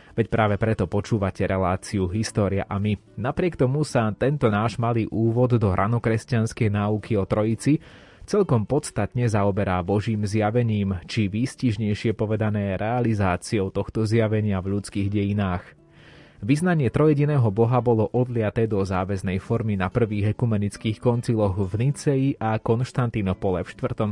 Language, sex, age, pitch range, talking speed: Slovak, male, 30-49, 100-120 Hz, 130 wpm